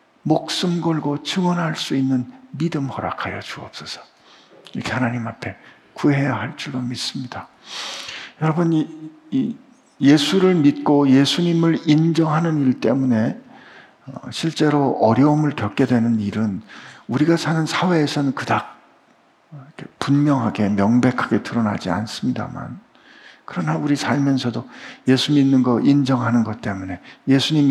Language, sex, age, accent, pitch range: Korean, male, 50-69, native, 125-170 Hz